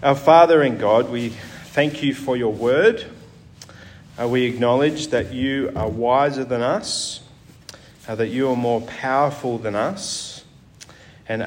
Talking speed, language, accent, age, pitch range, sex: 145 wpm, English, Australian, 30-49, 110-135 Hz, male